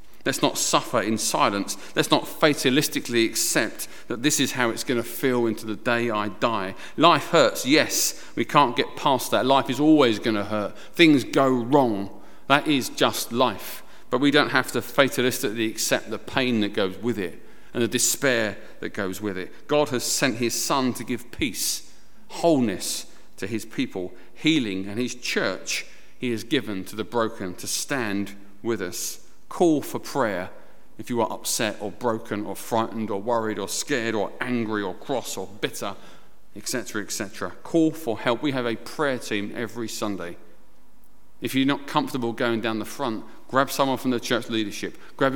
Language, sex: English, male